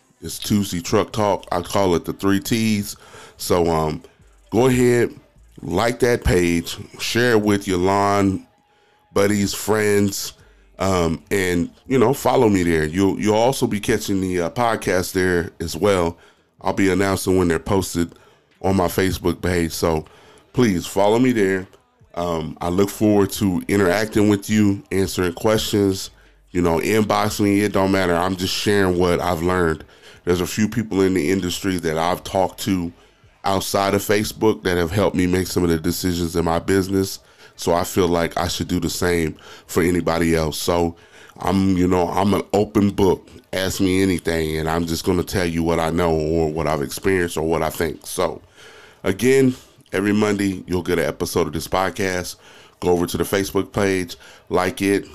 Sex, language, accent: male, English, American